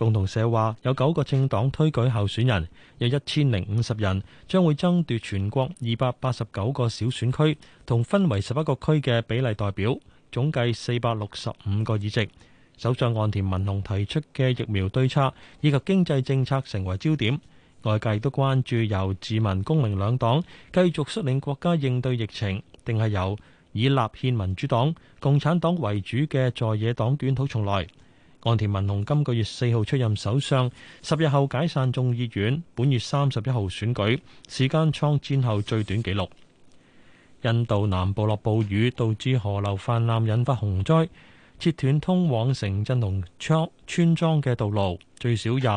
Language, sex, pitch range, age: Chinese, male, 105-140 Hz, 20-39